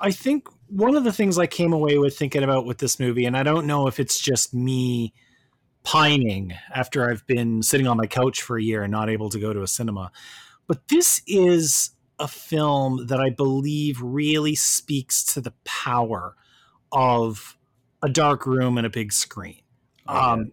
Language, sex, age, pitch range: English, male, 30-49, 120-155 Hz